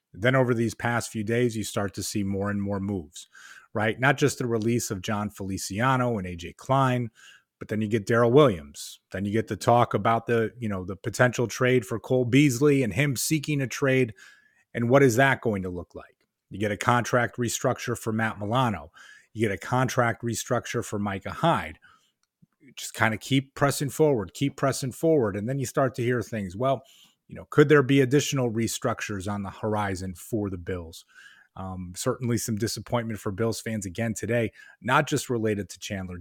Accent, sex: American, male